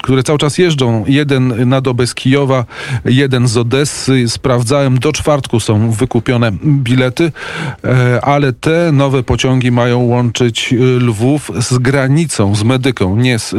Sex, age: male, 40-59